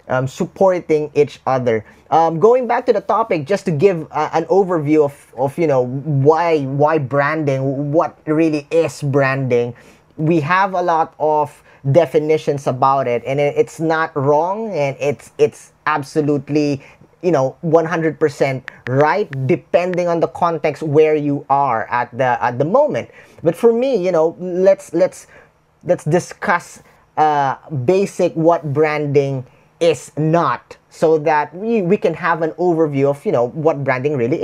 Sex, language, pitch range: male, English, 145-180 Hz